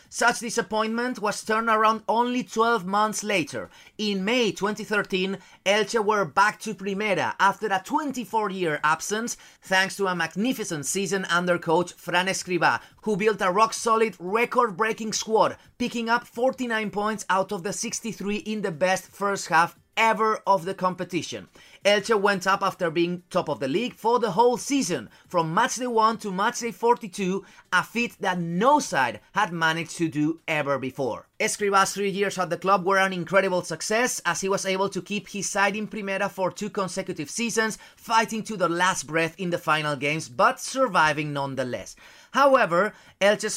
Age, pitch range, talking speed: 30-49, 175-220 Hz, 170 wpm